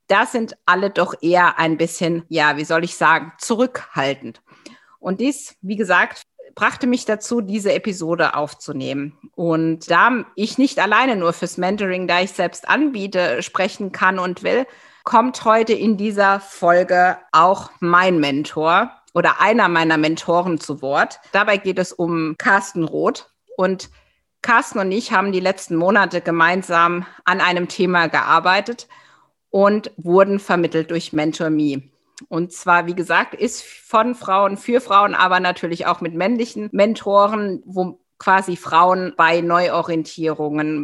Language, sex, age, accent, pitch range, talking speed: German, female, 50-69, German, 165-205 Hz, 145 wpm